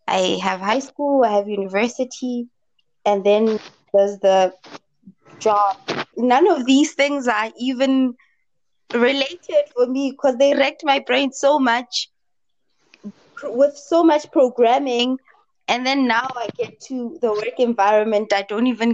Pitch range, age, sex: 215-280 Hz, 20-39, female